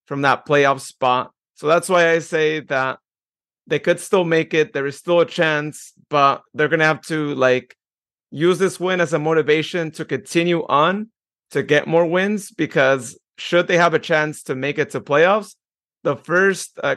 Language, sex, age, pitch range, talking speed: English, male, 30-49, 140-165 Hz, 190 wpm